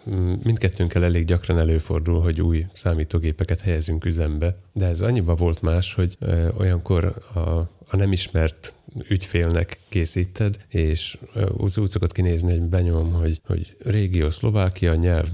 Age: 30-49